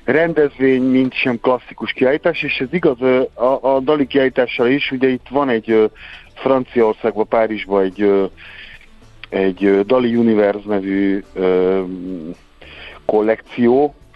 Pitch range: 100-125 Hz